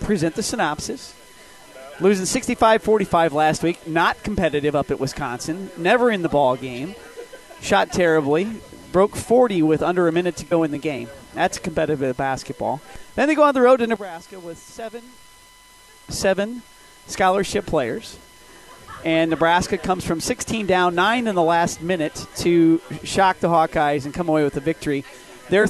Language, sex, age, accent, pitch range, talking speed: English, male, 40-59, American, 145-190 Hz, 160 wpm